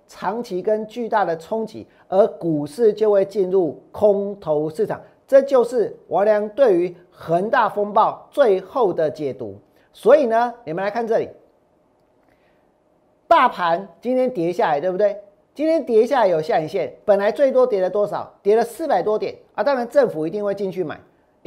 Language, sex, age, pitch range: Chinese, male, 50-69, 195-260 Hz